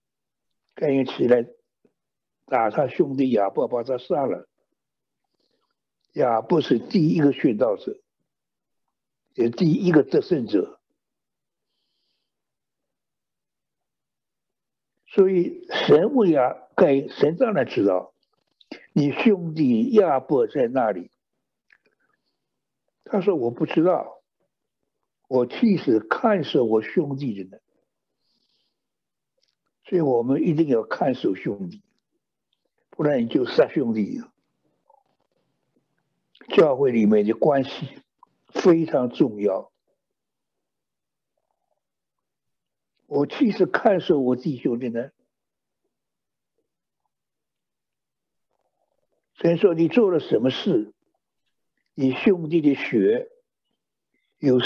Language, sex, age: Chinese, male, 60-79